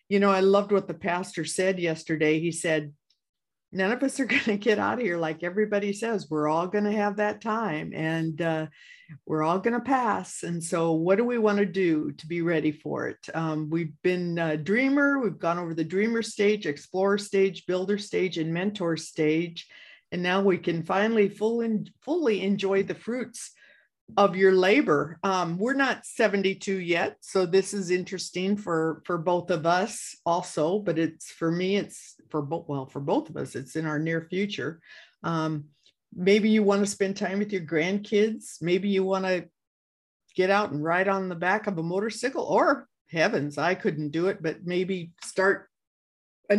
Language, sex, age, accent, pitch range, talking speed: English, female, 50-69, American, 165-210 Hz, 190 wpm